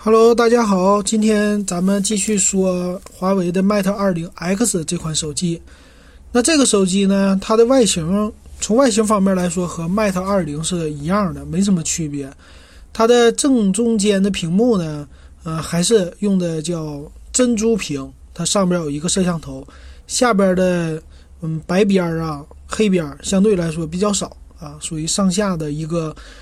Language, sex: Chinese, male